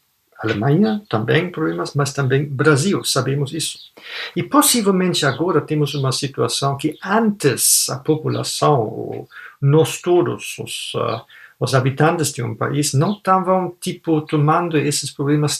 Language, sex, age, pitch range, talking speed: Portuguese, male, 50-69, 140-175 Hz, 125 wpm